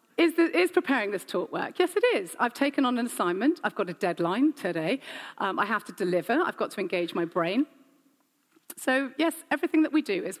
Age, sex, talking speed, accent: 40-59, female, 210 wpm, British